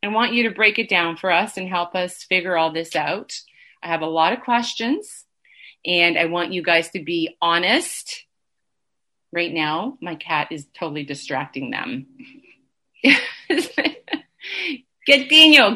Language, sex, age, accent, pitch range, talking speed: English, female, 30-49, American, 170-245 Hz, 150 wpm